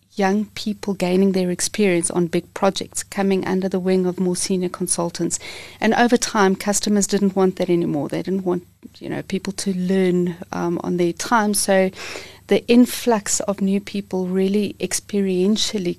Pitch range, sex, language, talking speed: 175-200 Hz, female, English, 165 wpm